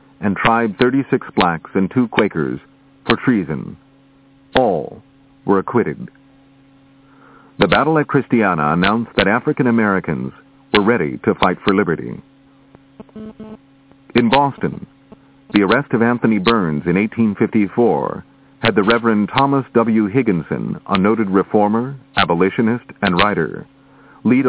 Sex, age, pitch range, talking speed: male, 50-69, 110-135 Hz, 120 wpm